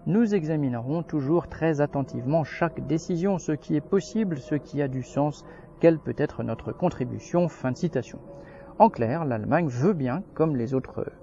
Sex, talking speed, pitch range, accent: male, 175 wpm, 125-170 Hz, French